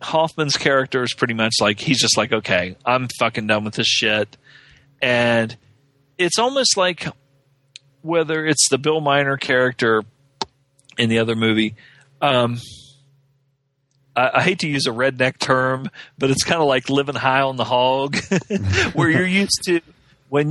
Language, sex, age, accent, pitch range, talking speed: English, male, 40-59, American, 115-140 Hz, 160 wpm